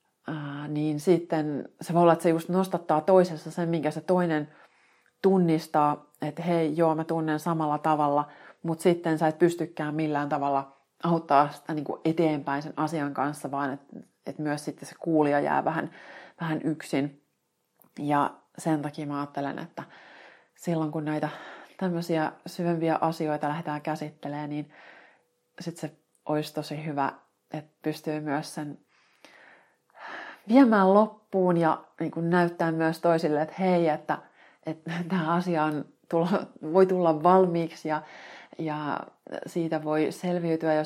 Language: Finnish